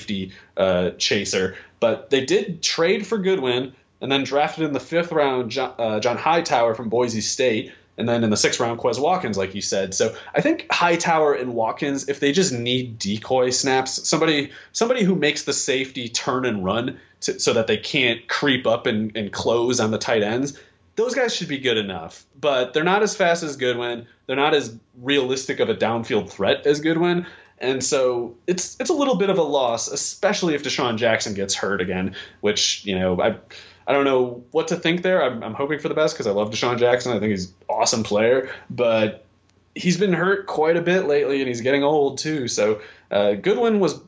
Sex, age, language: male, 30-49, English